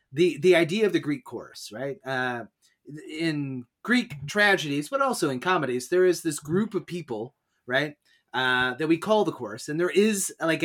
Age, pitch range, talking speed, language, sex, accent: 30-49, 130-190 Hz, 185 wpm, English, male, American